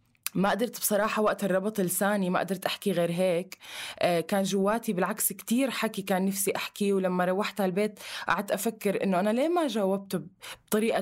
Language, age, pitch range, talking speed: Arabic, 20-39, 175-215 Hz, 170 wpm